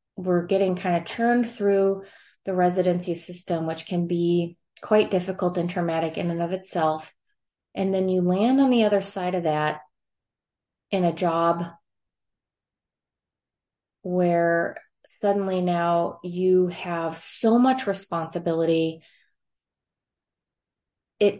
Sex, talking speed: female, 120 wpm